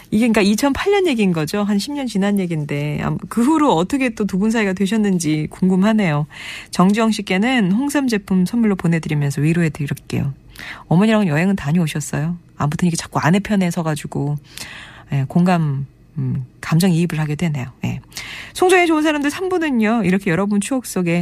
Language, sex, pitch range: Korean, female, 150-215 Hz